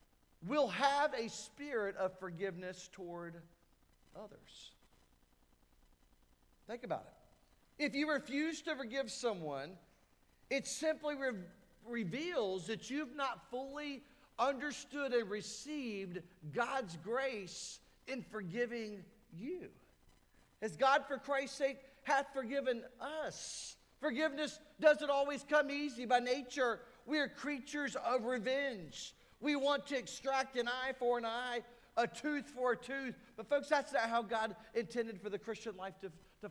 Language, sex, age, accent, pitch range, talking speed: English, male, 40-59, American, 205-275 Hz, 130 wpm